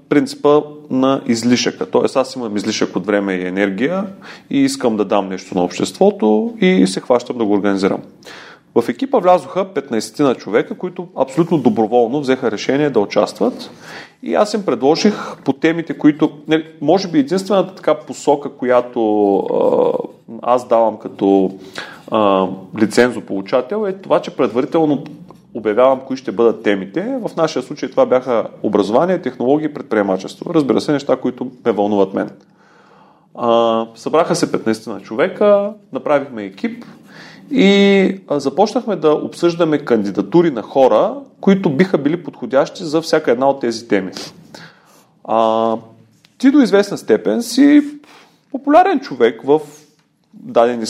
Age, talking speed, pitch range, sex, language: 30-49, 140 wpm, 110-180 Hz, male, Bulgarian